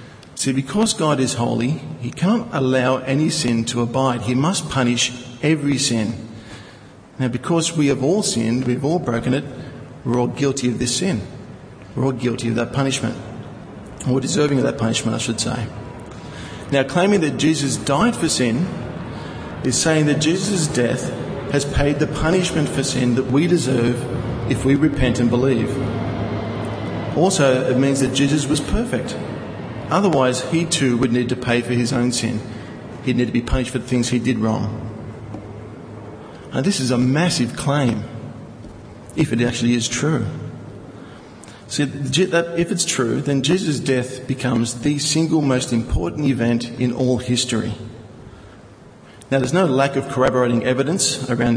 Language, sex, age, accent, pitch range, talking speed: English, male, 40-59, Australian, 120-145 Hz, 160 wpm